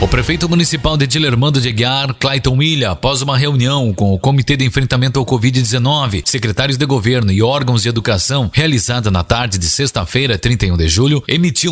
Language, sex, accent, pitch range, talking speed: Portuguese, male, Brazilian, 115-145 Hz, 180 wpm